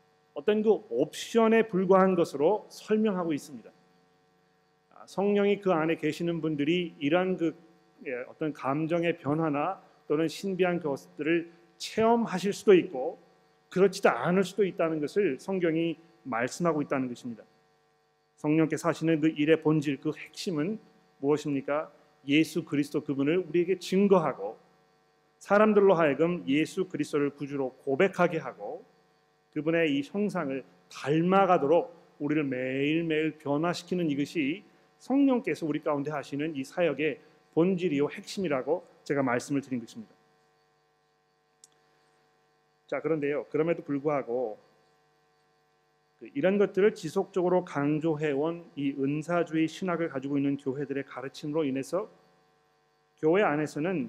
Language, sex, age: Korean, male, 40-59